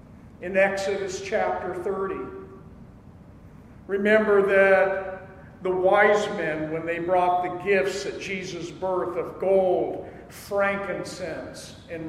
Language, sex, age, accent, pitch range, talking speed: English, male, 50-69, American, 160-205 Hz, 105 wpm